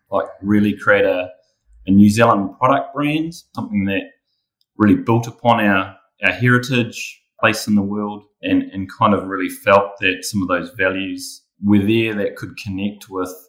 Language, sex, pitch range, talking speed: English, male, 95-125 Hz, 170 wpm